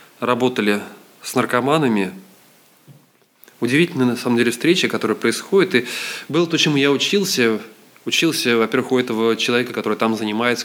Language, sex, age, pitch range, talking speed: Russian, male, 20-39, 105-130 Hz, 135 wpm